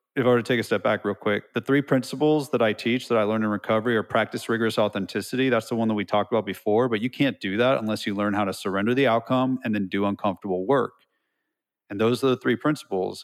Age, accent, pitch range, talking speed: 30-49, American, 105-130 Hz, 260 wpm